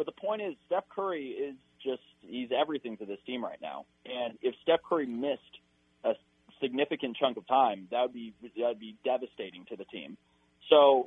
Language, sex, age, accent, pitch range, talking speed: English, male, 30-49, American, 110-145 Hz, 200 wpm